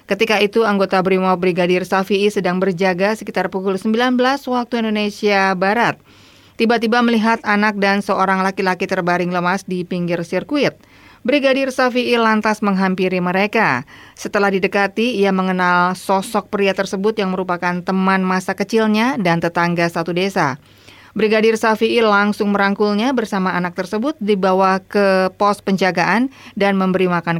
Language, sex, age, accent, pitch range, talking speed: Indonesian, female, 20-39, native, 180-220 Hz, 130 wpm